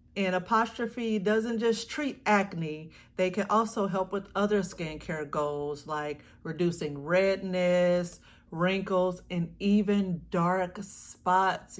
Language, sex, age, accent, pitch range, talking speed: English, female, 40-59, American, 175-210 Hz, 110 wpm